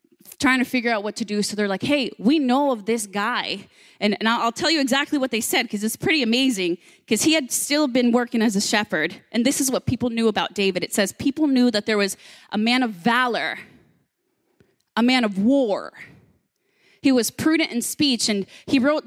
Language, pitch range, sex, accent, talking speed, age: English, 220-270 Hz, female, American, 215 wpm, 20-39